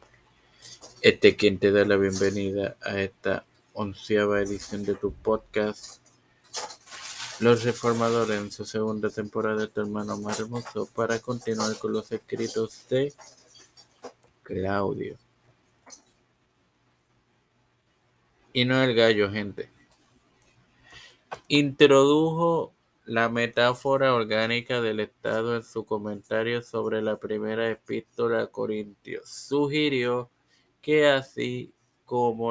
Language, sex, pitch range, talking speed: Spanish, male, 110-120 Hz, 105 wpm